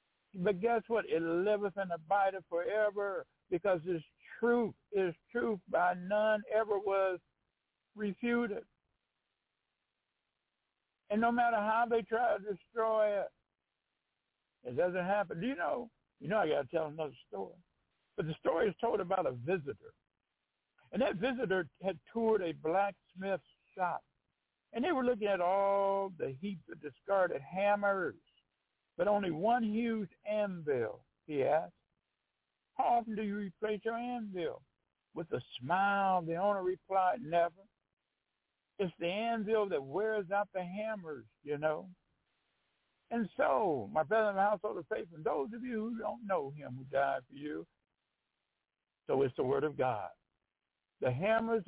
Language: English